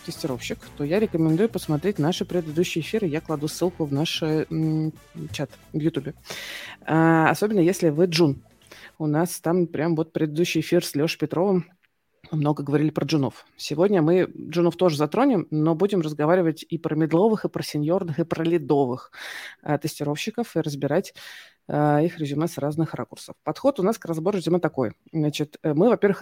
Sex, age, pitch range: female, 20-39, 150-180 Hz